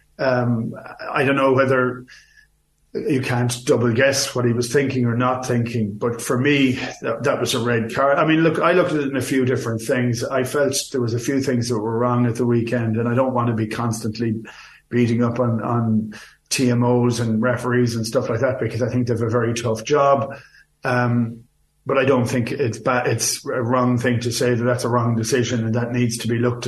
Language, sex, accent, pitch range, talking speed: English, male, Irish, 115-130 Hz, 225 wpm